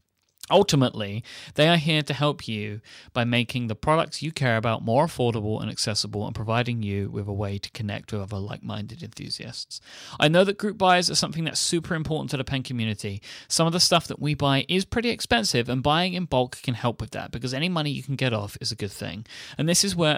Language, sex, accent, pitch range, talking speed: English, male, British, 115-160 Hz, 230 wpm